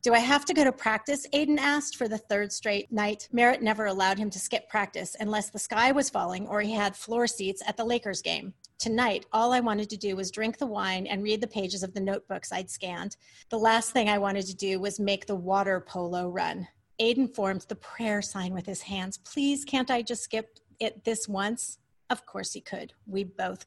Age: 30-49